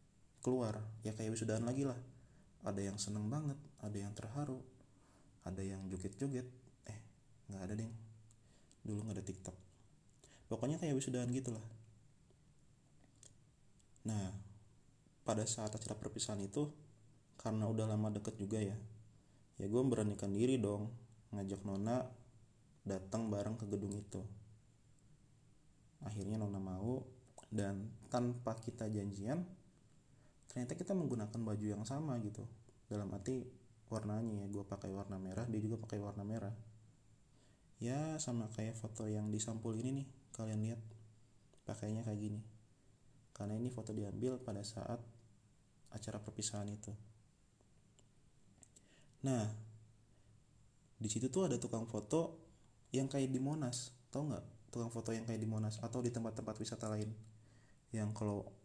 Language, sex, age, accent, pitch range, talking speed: Indonesian, male, 30-49, native, 105-125 Hz, 130 wpm